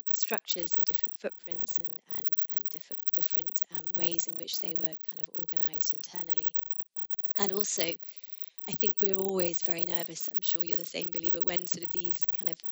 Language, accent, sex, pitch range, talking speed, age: English, British, female, 165-185 Hz, 190 wpm, 30-49